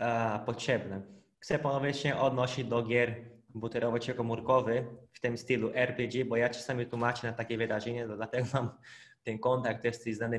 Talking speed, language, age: 160 wpm, Polish, 20-39